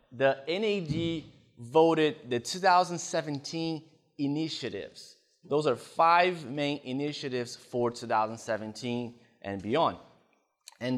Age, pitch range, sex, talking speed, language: 20-39, 115-155 Hz, male, 85 wpm, English